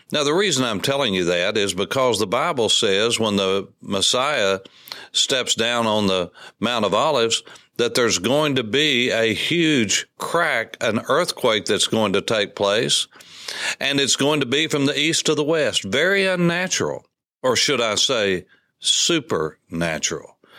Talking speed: 160 wpm